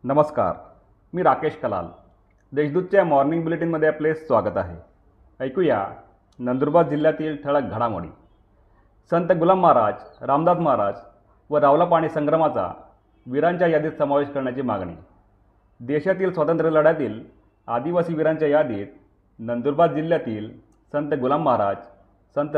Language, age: Marathi, 40-59